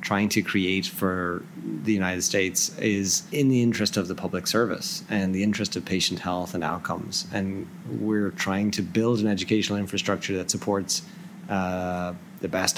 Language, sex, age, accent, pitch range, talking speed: English, male, 30-49, American, 95-120 Hz, 170 wpm